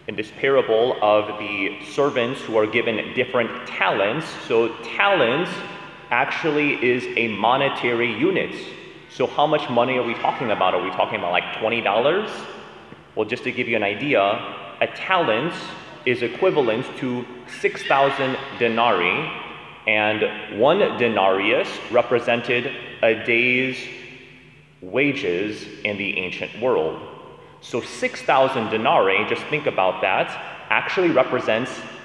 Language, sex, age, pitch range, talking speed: English, male, 30-49, 110-140 Hz, 125 wpm